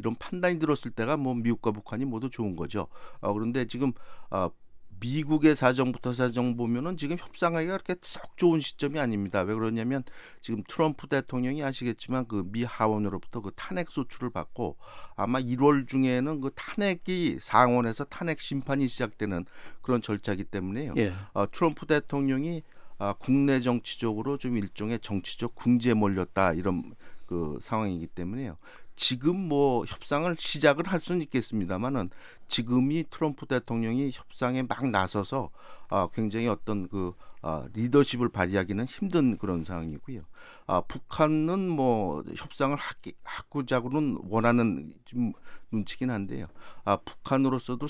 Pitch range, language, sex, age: 105-140 Hz, Korean, male, 50-69